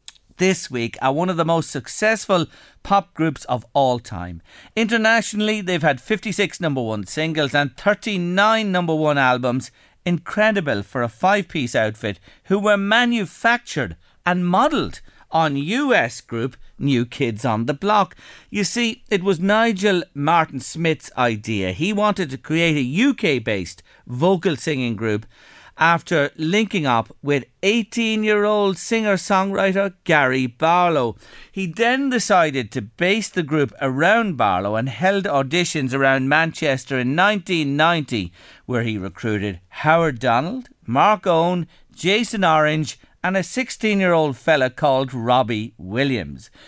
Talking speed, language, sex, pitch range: 130 wpm, English, male, 130-200 Hz